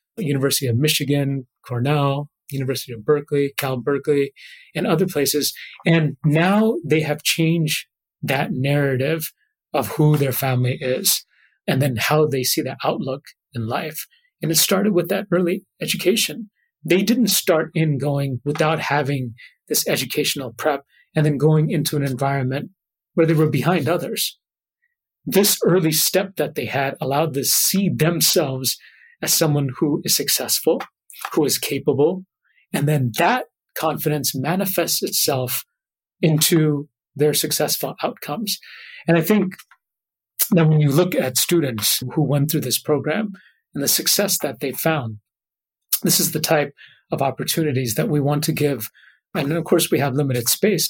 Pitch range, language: 140-175 Hz, English